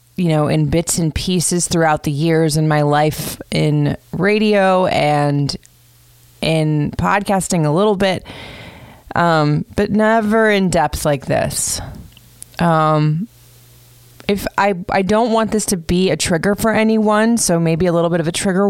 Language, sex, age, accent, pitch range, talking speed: English, female, 20-39, American, 145-175 Hz, 155 wpm